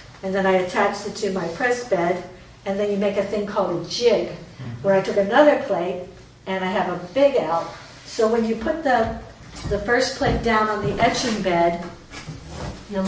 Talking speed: 195 wpm